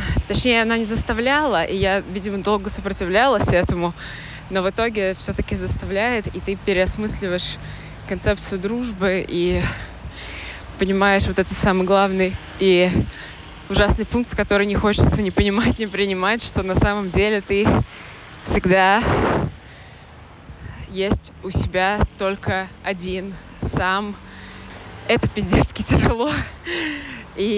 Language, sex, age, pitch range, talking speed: Russian, female, 20-39, 165-200 Hz, 115 wpm